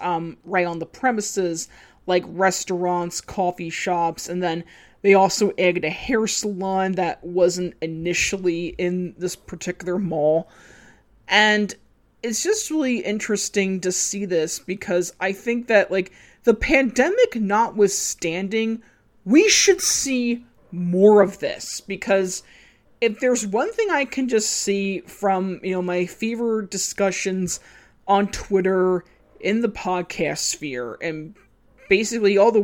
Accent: American